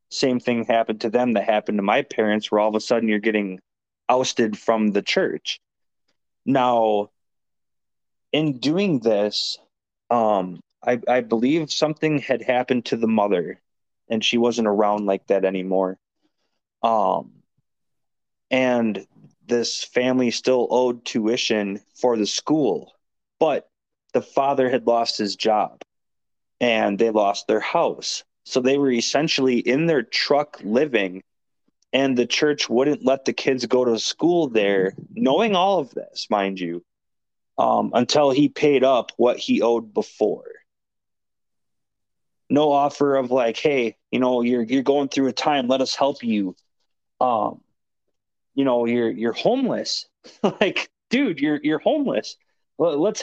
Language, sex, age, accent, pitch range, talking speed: English, male, 20-39, American, 110-135 Hz, 145 wpm